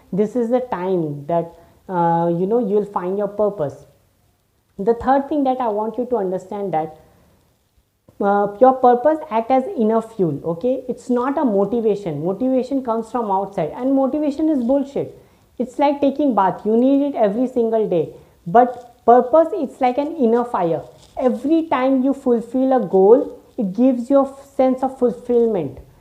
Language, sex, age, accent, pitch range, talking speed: English, female, 20-39, Indian, 195-255 Hz, 170 wpm